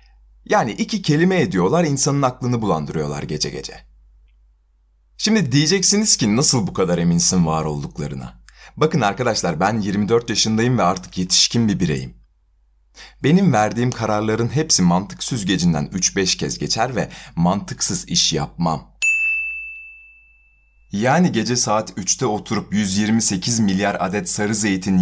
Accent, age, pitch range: native, 30-49, 80-135 Hz